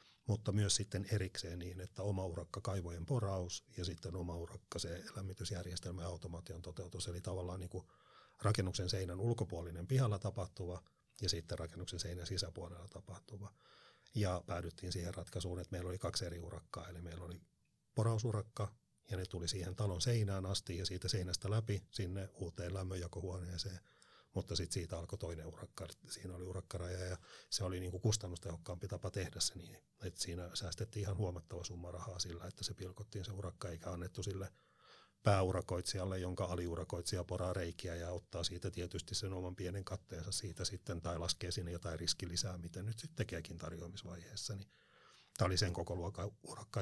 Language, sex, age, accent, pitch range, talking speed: Finnish, male, 30-49, native, 90-100 Hz, 160 wpm